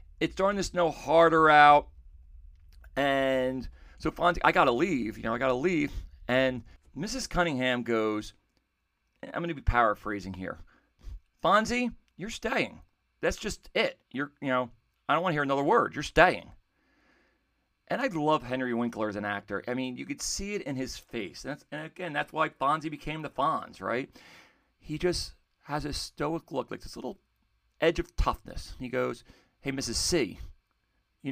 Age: 40-59